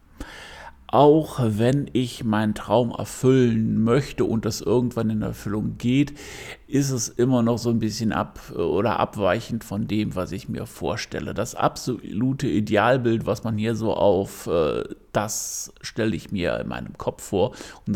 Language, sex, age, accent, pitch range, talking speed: German, male, 60-79, German, 105-130 Hz, 155 wpm